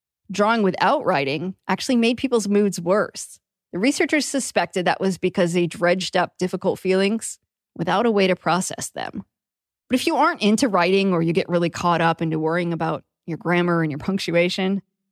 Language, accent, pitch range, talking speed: English, American, 175-230 Hz, 180 wpm